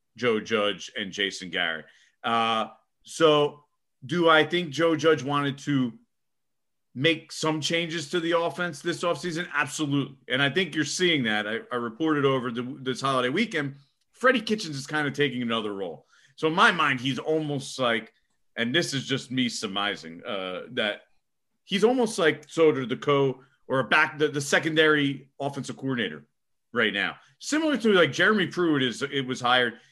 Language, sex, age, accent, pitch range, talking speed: English, male, 30-49, American, 130-165 Hz, 170 wpm